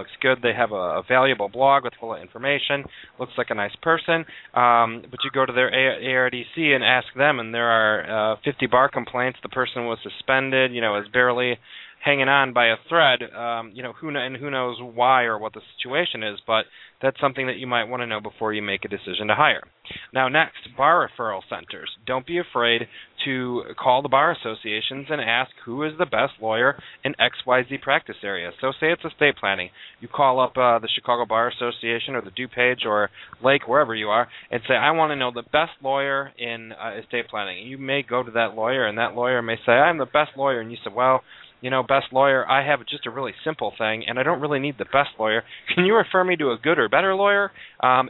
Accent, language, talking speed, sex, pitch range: American, English, 225 wpm, male, 115-140 Hz